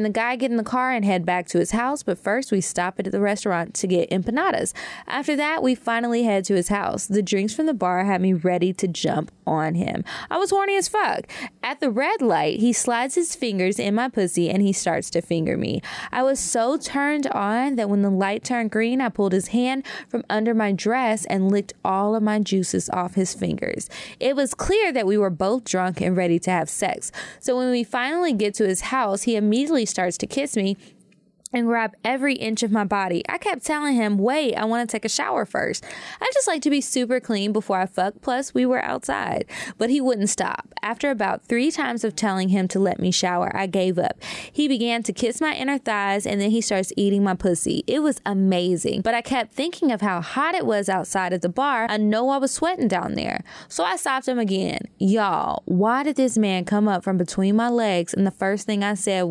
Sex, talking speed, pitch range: female, 230 wpm, 195-255 Hz